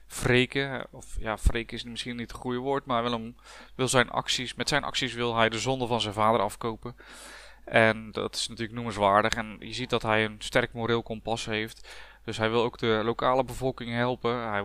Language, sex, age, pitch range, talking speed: Dutch, male, 20-39, 115-135 Hz, 205 wpm